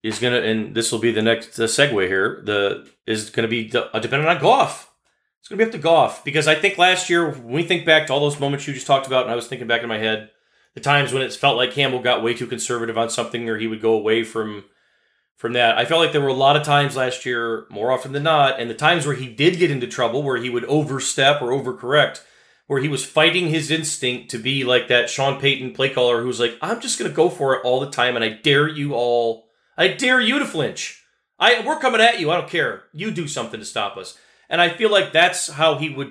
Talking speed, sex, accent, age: 270 wpm, male, American, 30-49